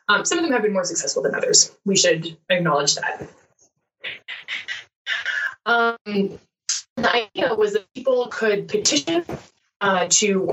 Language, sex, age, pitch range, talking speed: English, female, 20-39, 170-235 Hz, 135 wpm